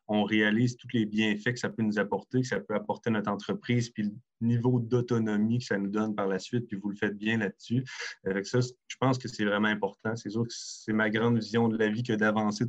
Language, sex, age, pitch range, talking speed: French, male, 30-49, 105-120 Hz, 255 wpm